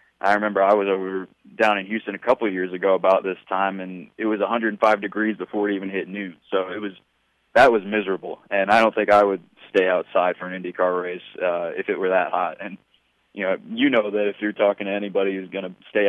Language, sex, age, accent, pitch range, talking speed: English, male, 20-39, American, 95-110 Hz, 245 wpm